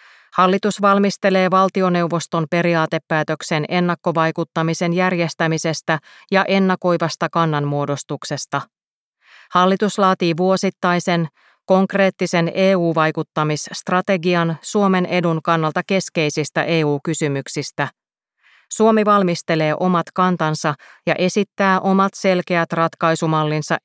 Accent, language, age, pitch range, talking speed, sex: native, Finnish, 30-49, 160-185 Hz, 70 wpm, female